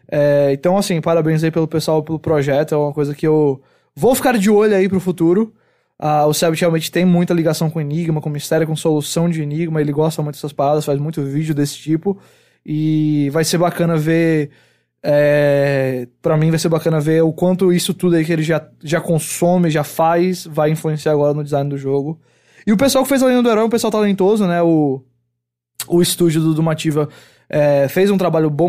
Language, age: English, 20-39